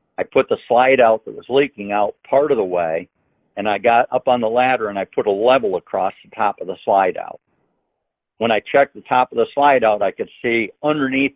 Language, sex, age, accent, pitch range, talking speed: English, male, 60-79, American, 110-135 Hz, 240 wpm